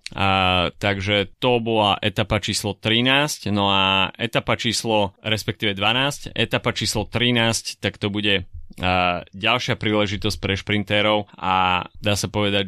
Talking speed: 135 wpm